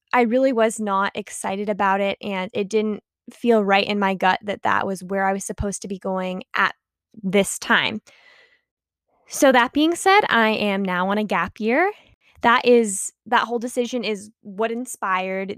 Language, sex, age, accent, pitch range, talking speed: English, female, 10-29, American, 190-225 Hz, 180 wpm